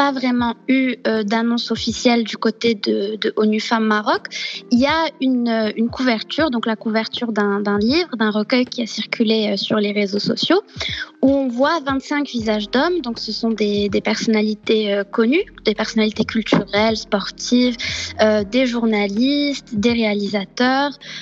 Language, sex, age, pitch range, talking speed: Arabic, female, 20-39, 215-260 Hz, 155 wpm